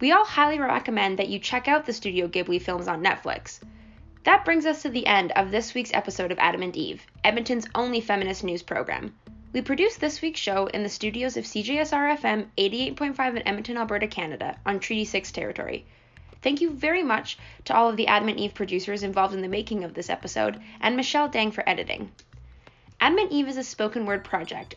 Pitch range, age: 195-270 Hz, 10-29